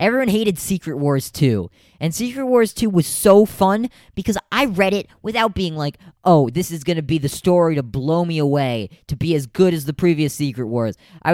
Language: English